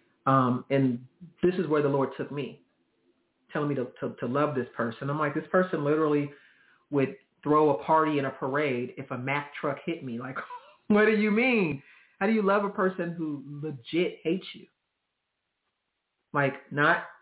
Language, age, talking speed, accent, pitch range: English, 40-59, 180 wpm, American, 135-175 Hz